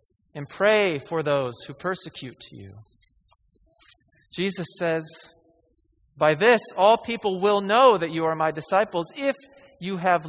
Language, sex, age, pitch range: English, male, 40-59, 130-170 Hz